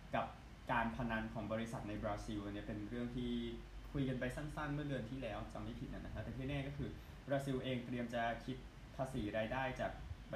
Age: 20-39